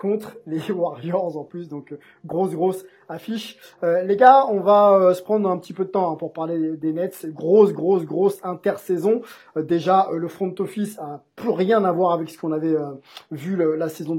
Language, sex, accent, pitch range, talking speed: French, male, French, 160-205 Hz, 220 wpm